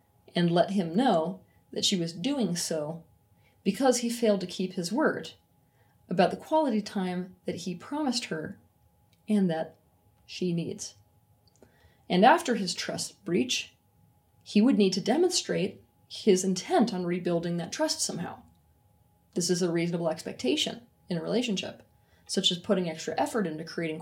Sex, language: female, English